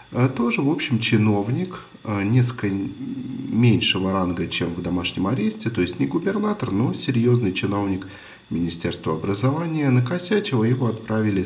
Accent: native